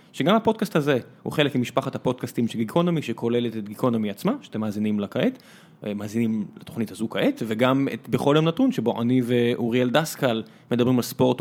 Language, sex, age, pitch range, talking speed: Hebrew, male, 20-39, 120-160 Hz, 175 wpm